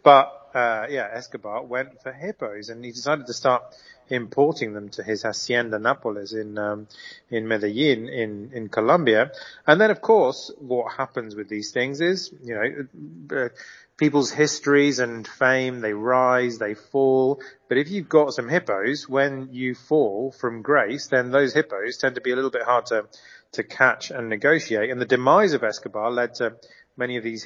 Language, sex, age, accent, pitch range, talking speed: English, male, 30-49, British, 115-135 Hz, 175 wpm